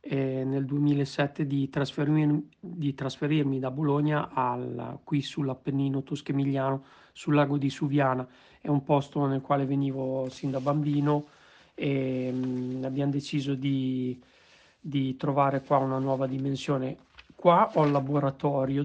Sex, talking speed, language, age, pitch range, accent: male, 130 wpm, Italian, 40-59, 130-150 Hz, native